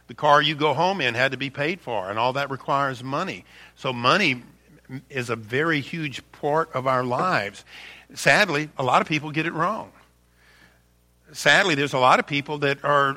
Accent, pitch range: American, 145-180 Hz